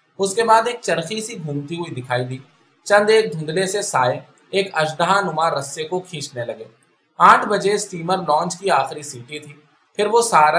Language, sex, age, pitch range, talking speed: Urdu, male, 20-39, 140-190 Hz, 95 wpm